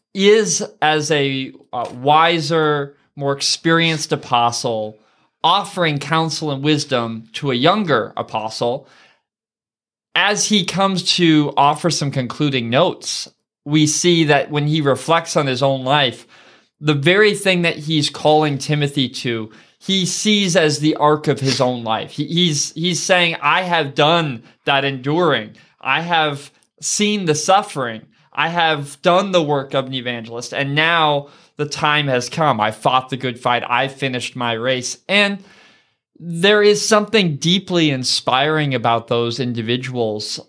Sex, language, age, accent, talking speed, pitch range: male, English, 20-39, American, 140 wpm, 130-165 Hz